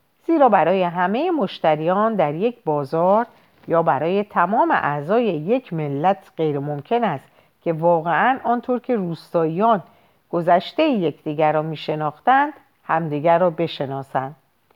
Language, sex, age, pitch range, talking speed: Persian, female, 50-69, 155-230 Hz, 115 wpm